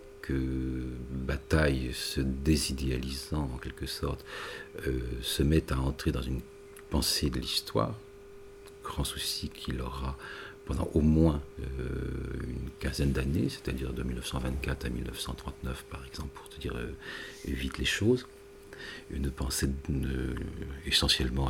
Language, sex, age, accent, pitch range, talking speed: French, male, 50-69, French, 65-85 Hz, 130 wpm